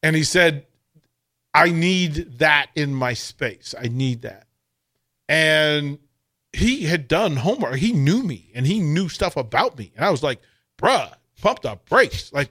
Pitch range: 130-190 Hz